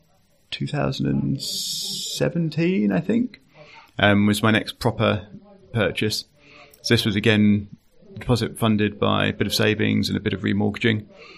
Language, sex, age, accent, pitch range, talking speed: English, male, 30-49, British, 100-115 Hz, 135 wpm